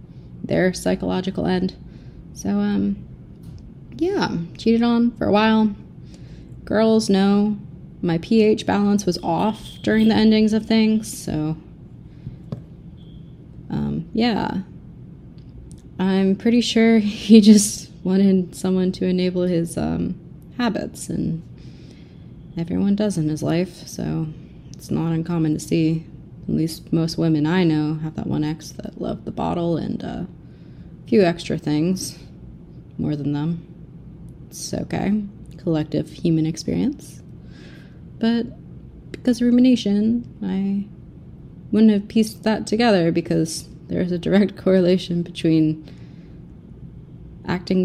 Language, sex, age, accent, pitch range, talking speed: English, female, 20-39, American, 160-205 Hz, 120 wpm